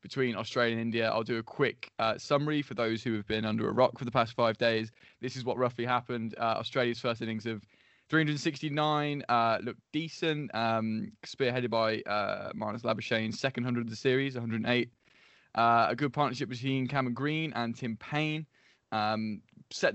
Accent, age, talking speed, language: British, 10-29, 185 wpm, English